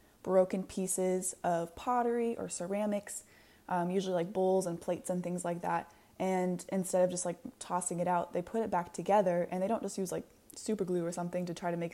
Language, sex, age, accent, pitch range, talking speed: English, female, 20-39, American, 175-195 Hz, 215 wpm